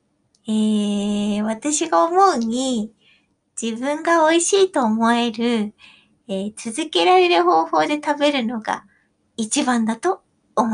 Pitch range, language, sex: 220-310 Hz, Japanese, female